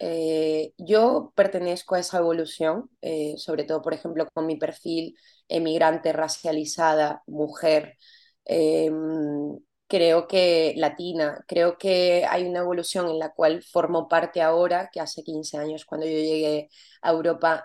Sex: female